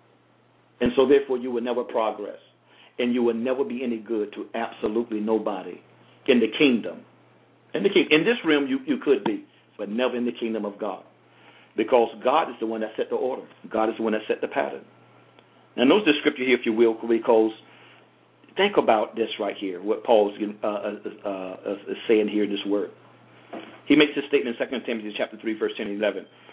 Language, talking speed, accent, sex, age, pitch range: English, 200 wpm, American, male, 50-69, 110-125 Hz